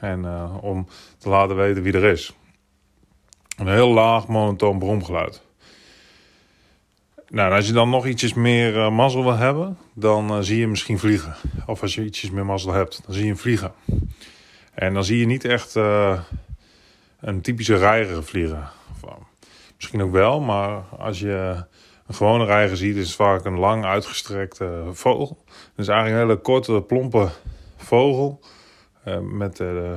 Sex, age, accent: male, 30-49, Dutch